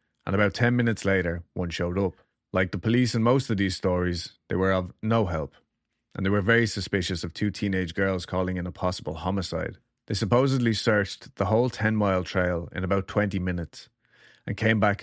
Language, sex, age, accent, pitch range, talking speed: English, male, 30-49, Irish, 90-110 Hz, 200 wpm